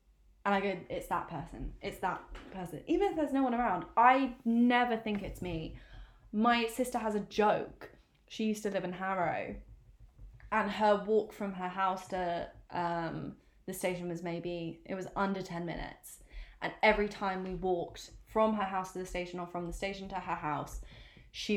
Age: 10-29